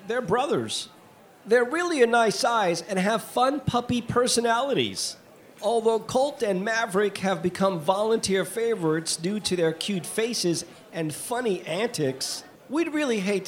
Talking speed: 140 wpm